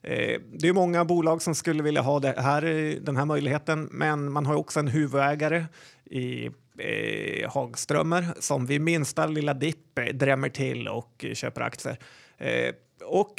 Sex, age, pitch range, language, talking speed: male, 30-49, 135-155 Hz, Swedish, 155 wpm